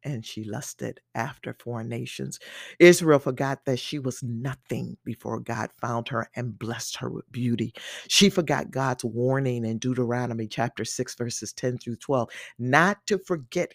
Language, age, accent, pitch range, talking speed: English, 50-69, American, 125-155 Hz, 155 wpm